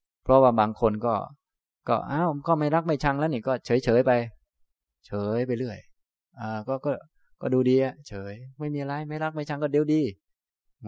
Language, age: Thai, 20-39